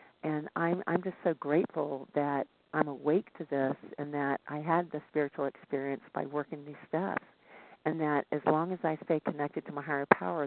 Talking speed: 195 wpm